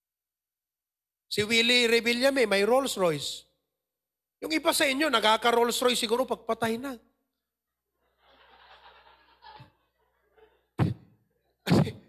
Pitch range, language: 185-255 Hz, English